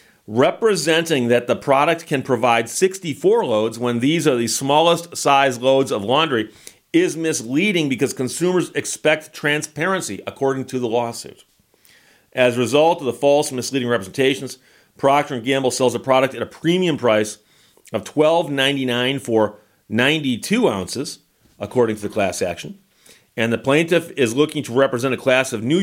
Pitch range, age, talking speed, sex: 115-150 Hz, 40-59, 155 wpm, male